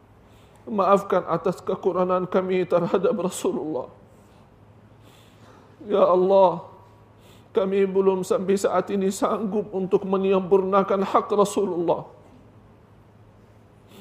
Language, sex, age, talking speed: Indonesian, male, 50-69, 75 wpm